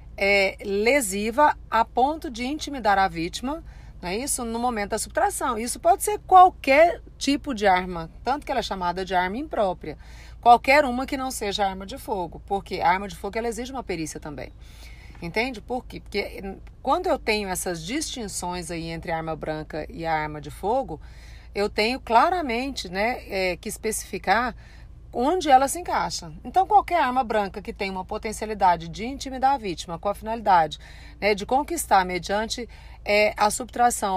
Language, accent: Portuguese, Brazilian